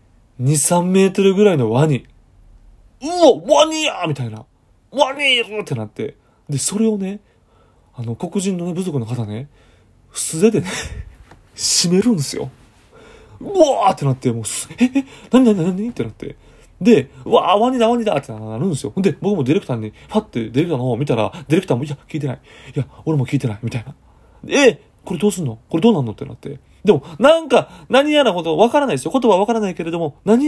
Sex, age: male, 30-49